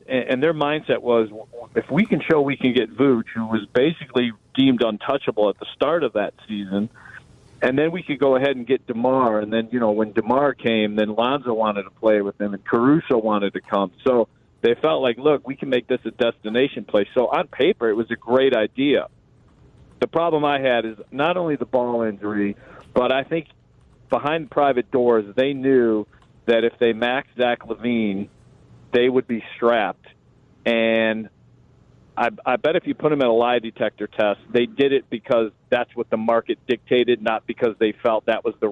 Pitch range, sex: 110-135 Hz, male